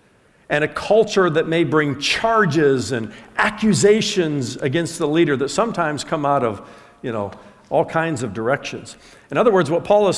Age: 50-69